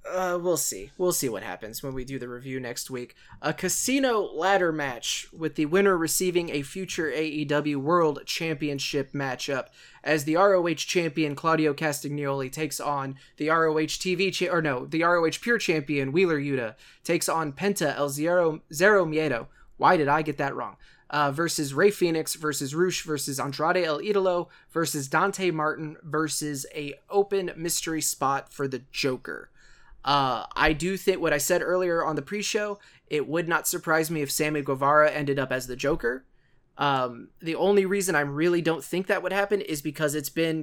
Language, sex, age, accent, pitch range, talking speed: English, male, 20-39, American, 145-175 Hz, 175 wpm